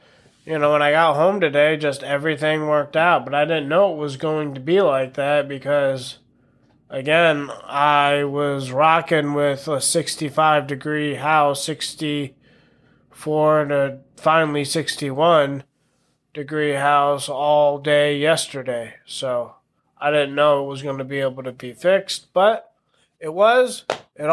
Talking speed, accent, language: 145 wpm, American, English